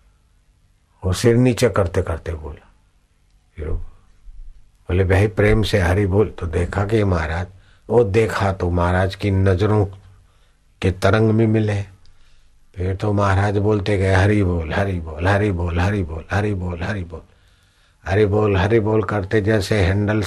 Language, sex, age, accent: Hindi, male, 50-69, native